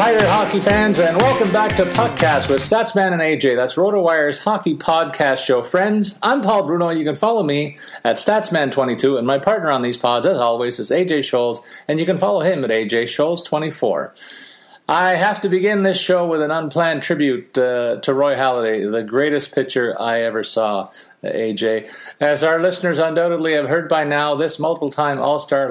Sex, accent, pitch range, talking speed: male, American, 120-165 Hz, 190 wpm